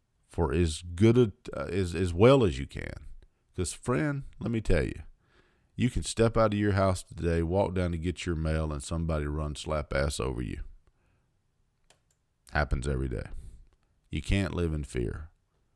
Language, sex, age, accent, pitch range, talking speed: English, male, 50-69, American, 75-95 Hz, 175 wpm